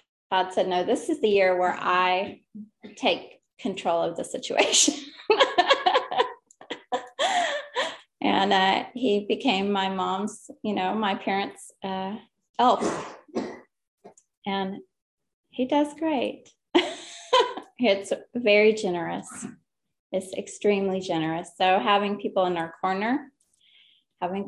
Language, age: English, 20-39